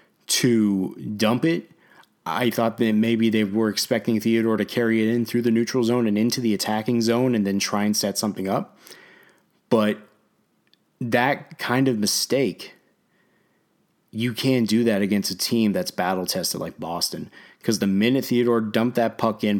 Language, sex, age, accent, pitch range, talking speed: English, male, 20-39, American, 100-115 Hz, 170 wpm